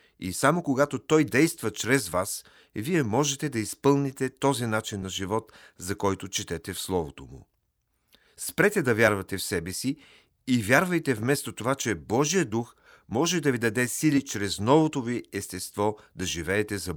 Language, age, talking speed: Bulgarian, 40-59, 165 wpm